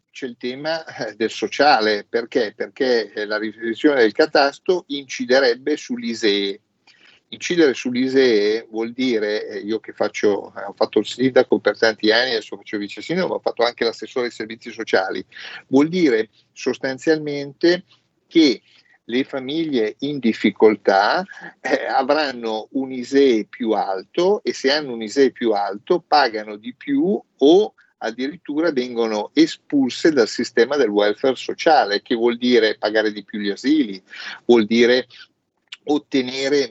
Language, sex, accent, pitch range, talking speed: Italian, male, native, 110-160 Hz, 140 wpm